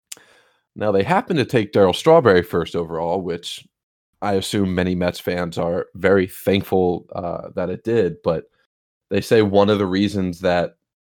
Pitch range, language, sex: 90-100 Hz, English, male